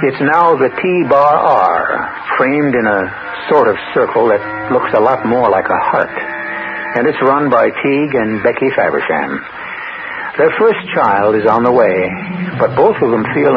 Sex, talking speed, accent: male, 170 wpm, American